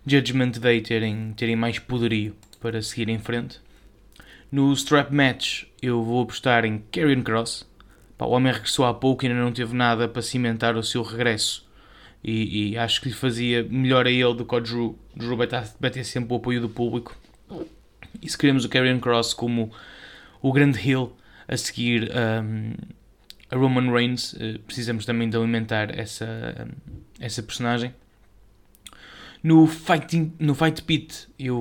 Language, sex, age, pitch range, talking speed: Portuguese, male, 20-39, 115-130 Hz, 160 wpm